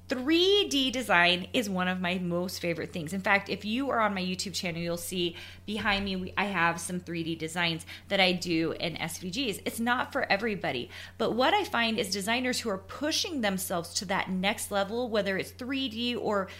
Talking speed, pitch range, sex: 195 wpm, 180-245 Hz, female